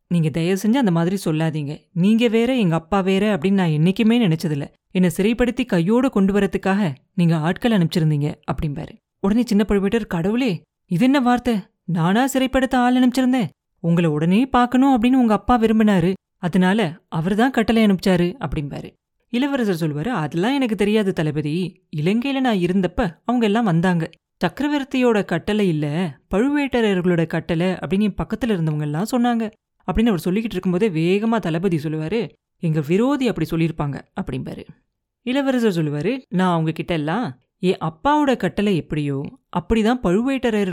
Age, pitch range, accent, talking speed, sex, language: 30-49, 170-230 Hz, native, 135 wpm, female, Tamil